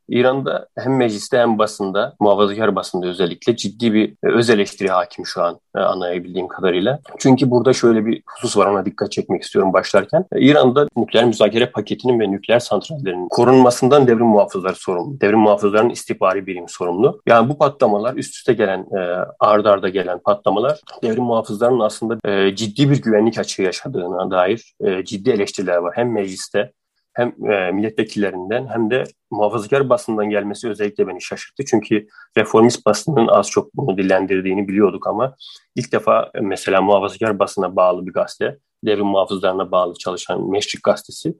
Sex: male